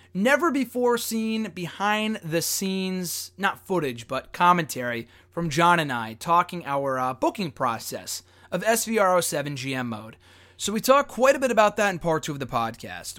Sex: male